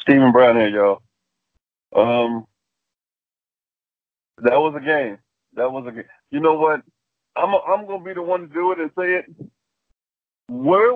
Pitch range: 135-185 Hz